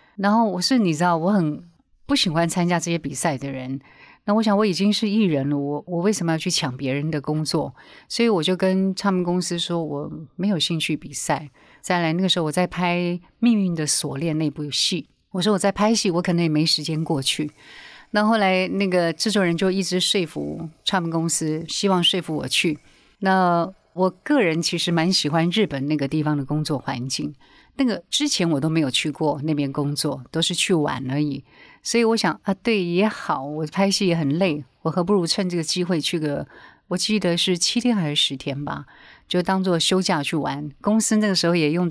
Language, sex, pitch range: Chinese, female, 155-195 Hz